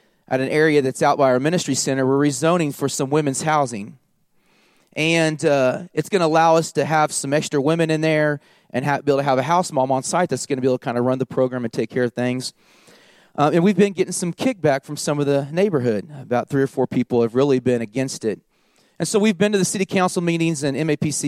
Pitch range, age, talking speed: 145-215 Hz, 30-49, 250 wpm